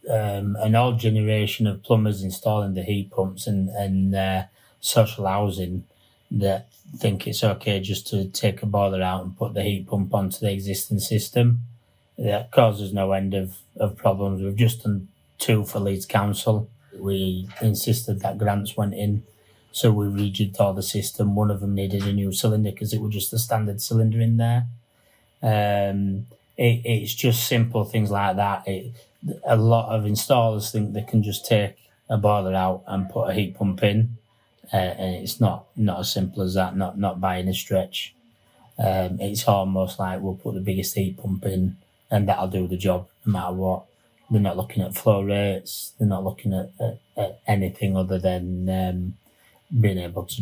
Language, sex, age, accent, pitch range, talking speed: English, male, 30-49, British, 95-115 Hz, 185 wpm